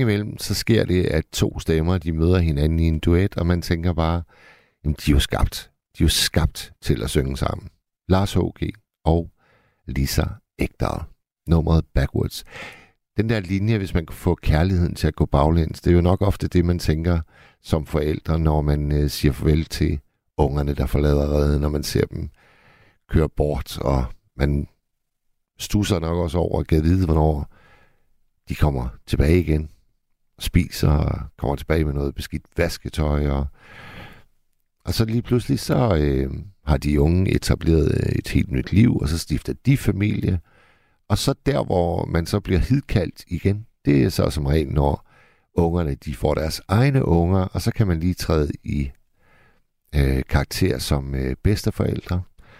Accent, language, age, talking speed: native, Danish, 60-79, 170 wpm